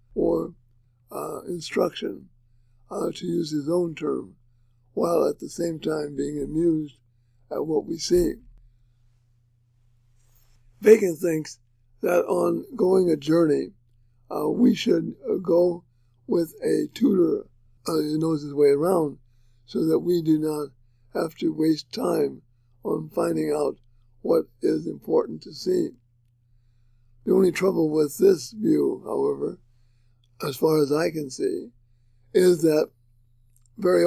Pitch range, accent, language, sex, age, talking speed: 120-170 Hz, American, English, male, 60-79, 130 wpm